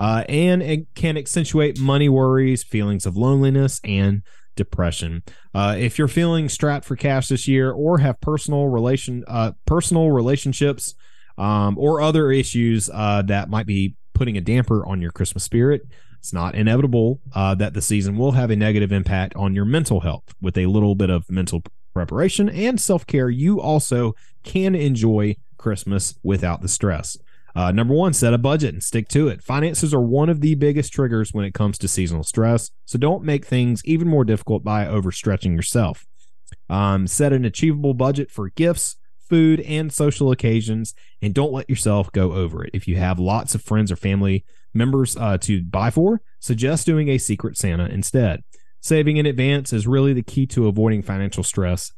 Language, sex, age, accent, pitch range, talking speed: English, male, 30-49, American, 100-140 Hz, 180 wpm